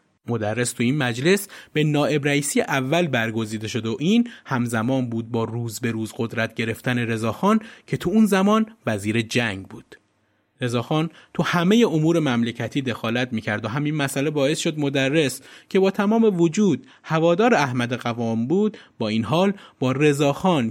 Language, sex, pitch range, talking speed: Persian, male, 125-180 Hz, 155 wpm